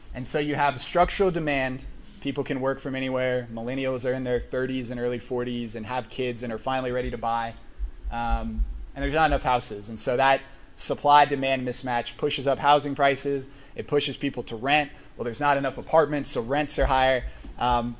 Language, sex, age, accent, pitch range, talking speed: English, male, 20-39, American, 125-145 Hz, 195 wpm